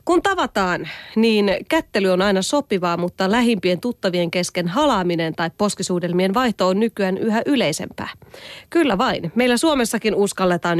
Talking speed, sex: 135 wpm, female